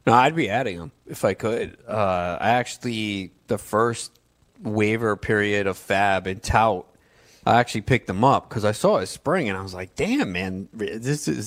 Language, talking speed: English, 200 wpm